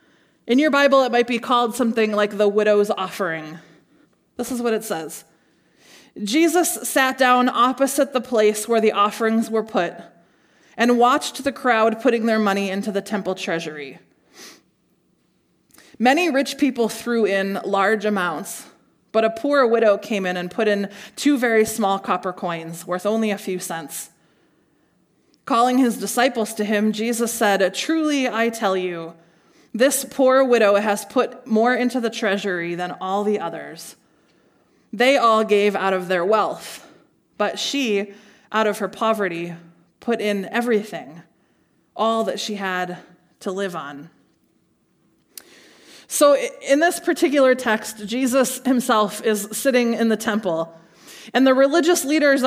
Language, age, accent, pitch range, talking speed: English, 20-39, American, 195-250 Hz, 145 wpm